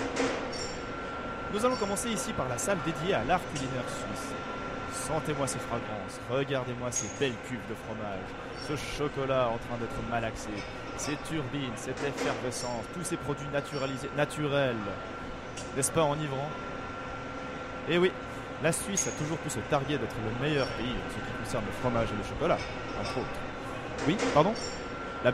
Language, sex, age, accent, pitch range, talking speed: French, male, 20-39, French, 120-165 Hz, 155 wpm